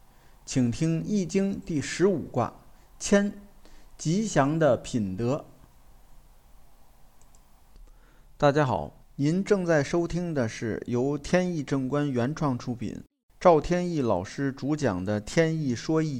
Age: 50-69